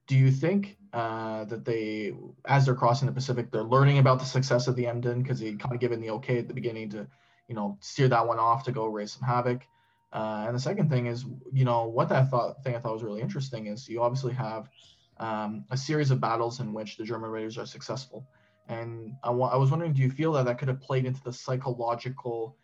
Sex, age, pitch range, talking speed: male, 20-39, 115-130 Hz, 240 wpm